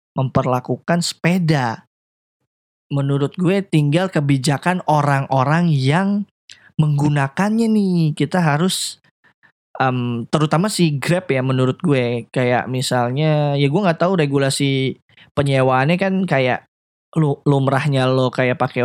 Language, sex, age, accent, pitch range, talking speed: Indonesian, male, 20-39, native, 135-170 Hz, 110 wpm